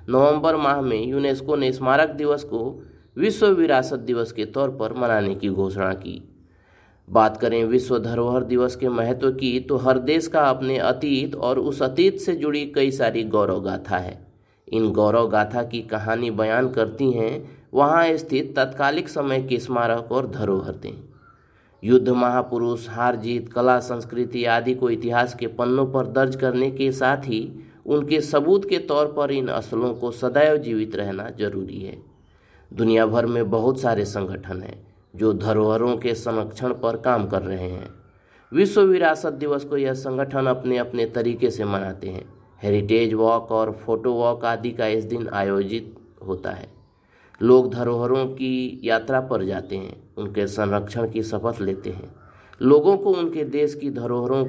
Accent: native